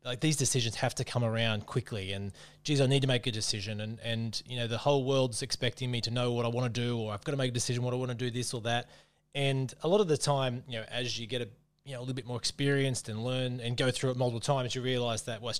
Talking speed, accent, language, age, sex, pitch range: 305 wpm, Australian, English, 20-39, male, 115-135 Hz